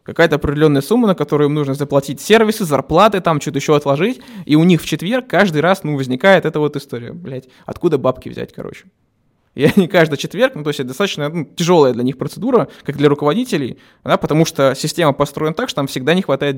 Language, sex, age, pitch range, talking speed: Russian, male, 20-39, 135-170 Hz, 210 wpm